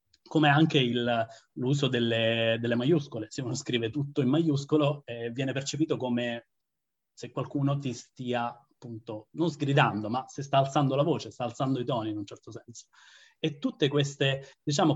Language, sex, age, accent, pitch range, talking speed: Italian, male, 30-49, native, 120-150 Hz, 165 wpm